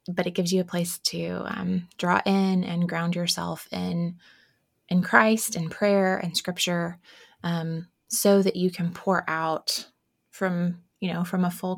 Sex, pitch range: female, 165-195 Hz